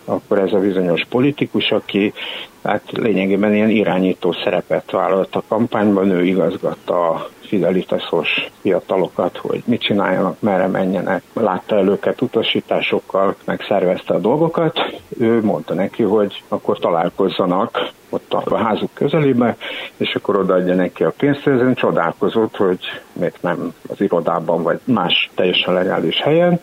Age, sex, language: 60-79, male, Hungarian